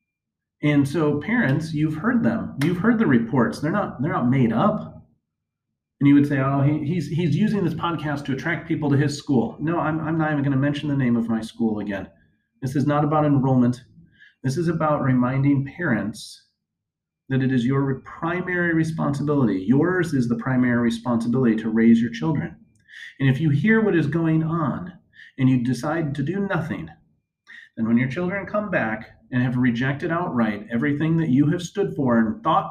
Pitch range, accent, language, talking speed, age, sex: 120-160 Hz, American, English, 190 wpm, 30-49, male